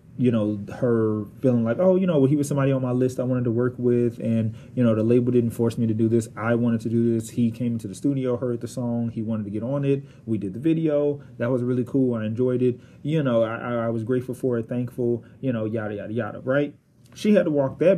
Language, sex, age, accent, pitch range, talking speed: English, male, 30-49, American, 115-135 Hz, 265 wpm